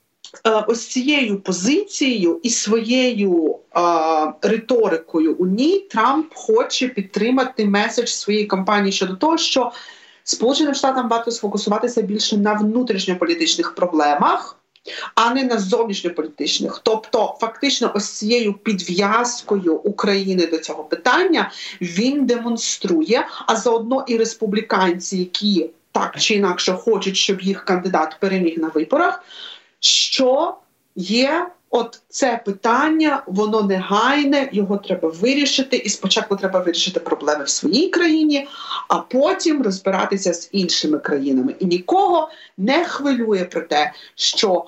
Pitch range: 190-275 Hz